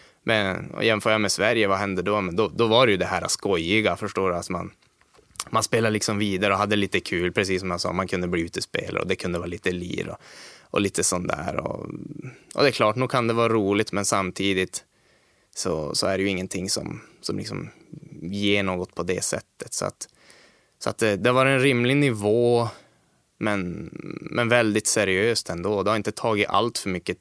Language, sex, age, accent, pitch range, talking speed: Swedish, male, 20-39, native, 95-110 Hz, 215 wpm